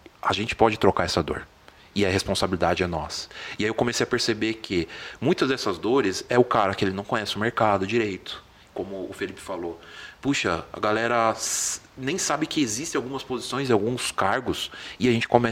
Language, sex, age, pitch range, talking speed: Portuguese, male, 30-49, 100-135 Hz, 180 wpm